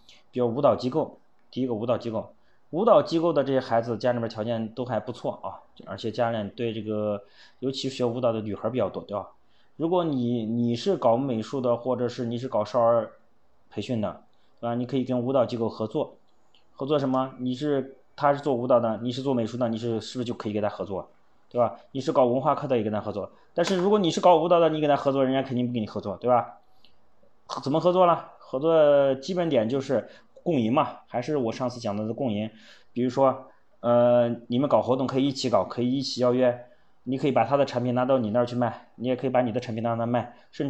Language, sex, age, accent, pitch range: Chinese, male, 20-39, native, 115-135 Hz